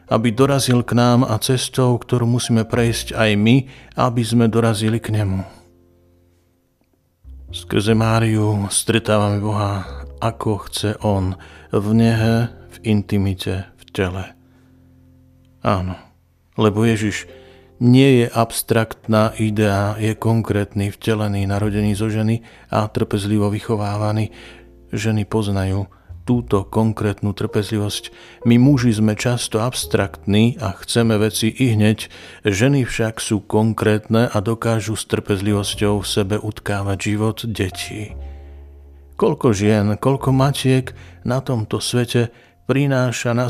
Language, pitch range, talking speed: Slovak, 100-120 Hz, 115 wpm